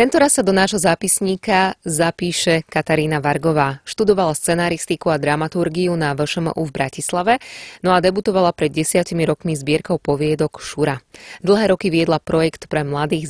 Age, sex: 20-39, female